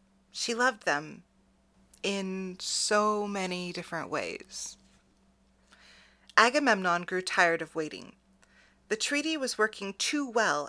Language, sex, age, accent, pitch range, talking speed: English, female, 30-49, American, 190-245 Hz, 105 wpm